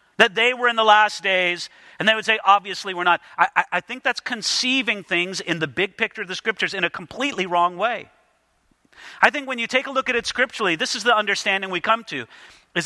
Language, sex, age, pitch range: English, male, 40-59, 200-255 Hz